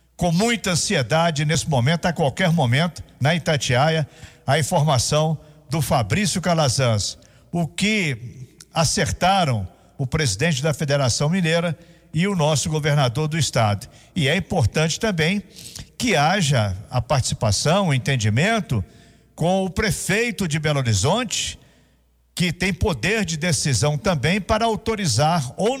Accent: Brazilian